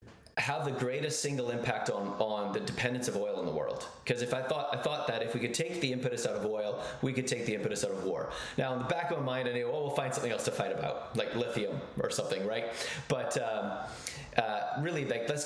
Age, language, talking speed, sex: 30-49, English, 255 wpm, male